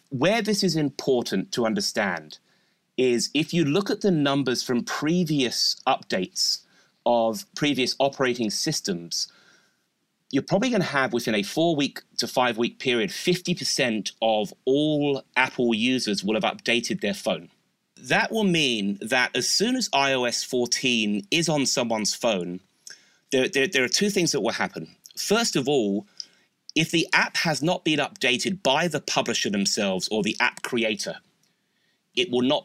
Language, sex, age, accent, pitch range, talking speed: English, male, 30-49, British, 115-170 Hz, 155 wpm